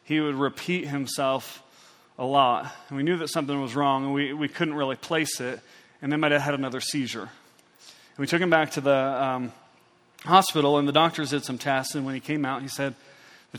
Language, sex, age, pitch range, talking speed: English, male, 30-49, 130-150 Hz, 220 wpm